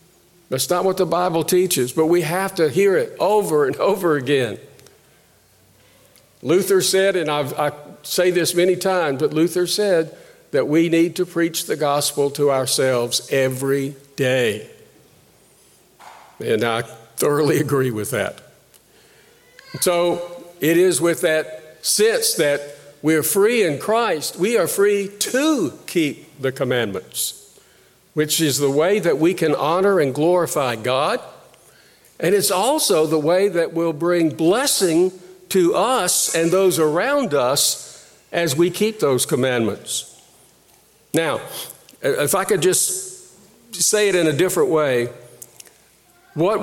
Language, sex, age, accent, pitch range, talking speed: English, male, 50-69, American, 145-185 Hz, 135 wpm